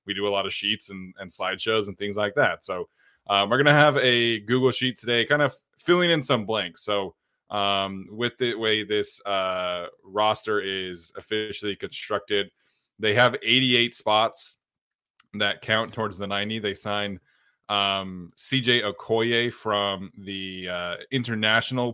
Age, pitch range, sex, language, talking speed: 20-39, 100-120 Hz, male, English, 155 wpm